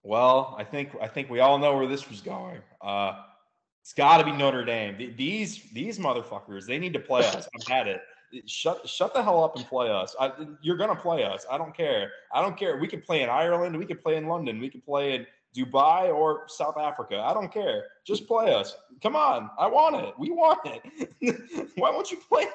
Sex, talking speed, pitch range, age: male, 225 wpm, 110-175 Hz, 20-39